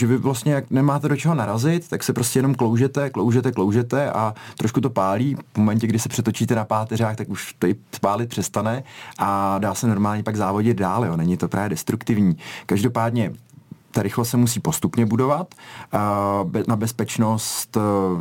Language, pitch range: Czech, 100-115 Hz